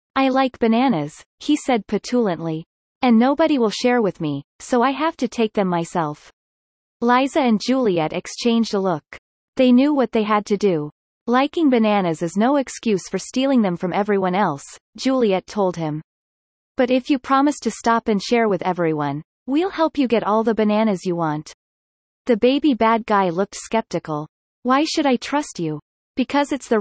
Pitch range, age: 180-250 Hz, 30-49